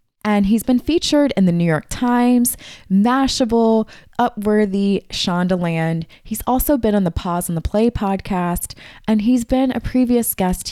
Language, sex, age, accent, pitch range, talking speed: English, female, 20-39, American, 165-215 Hz, 155 wpm